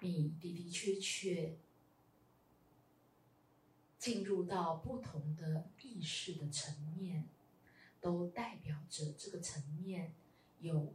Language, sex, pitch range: Chinese, female, 150-205 Hz